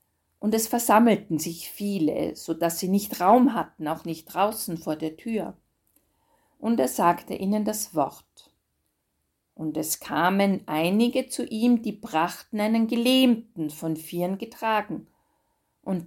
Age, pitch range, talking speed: 50-69, 160-230 Hz, 140 wpm